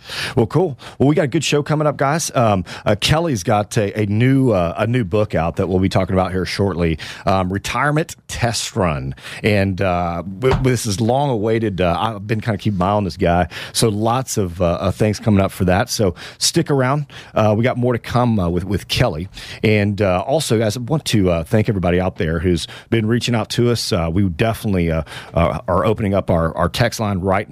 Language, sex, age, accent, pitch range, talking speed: English, male, 40-59, American, 85-115 Hz, 225 wpm